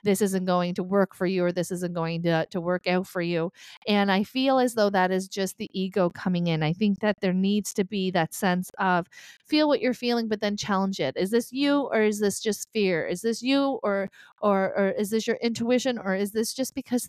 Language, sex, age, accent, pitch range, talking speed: English, female, 40-59, American, 180-225 Hz, 245 wpm